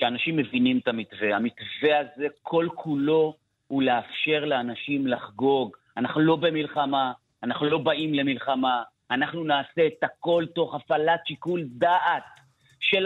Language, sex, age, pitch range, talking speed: Hebrew, male, 40-59, 145-205 Hz, 125 wpm